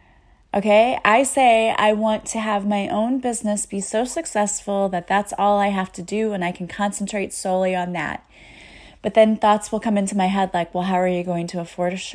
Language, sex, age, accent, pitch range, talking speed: English, female, 30-49, American, 185-225 Hz, 210 wpm